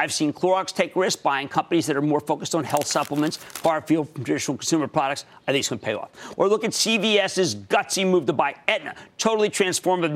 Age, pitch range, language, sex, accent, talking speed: 50-69, 150-220 Hz, English, male, American, 225 wpm